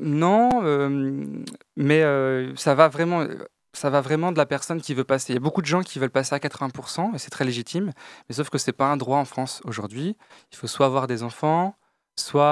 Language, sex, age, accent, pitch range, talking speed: French, male, 20-39, French, 125-165 Hz, 235 wpm